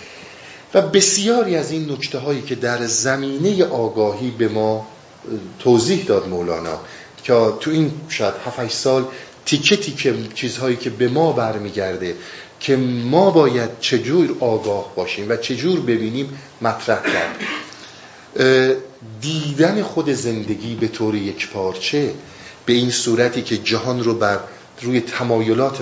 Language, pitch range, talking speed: Persian, 110-145 Hz, 130 wpm